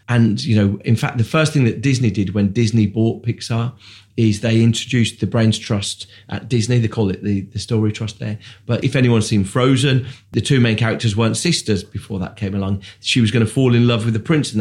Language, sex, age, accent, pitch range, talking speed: English, male, 30-49, British, 105-130 Hz, 235 wpm